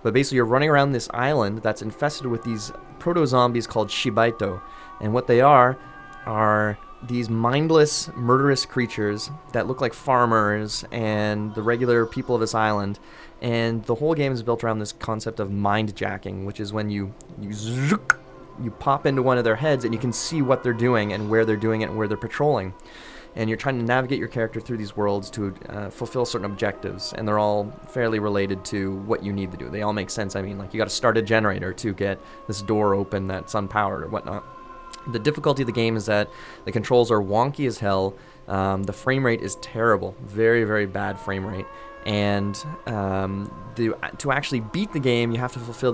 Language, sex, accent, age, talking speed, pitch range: English, male, American, 20-39, 200 wpm, 105-125 Hz